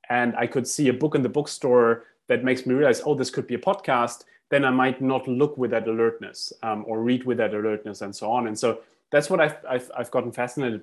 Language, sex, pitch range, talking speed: English, male, 115-140 Hz, 245 wpm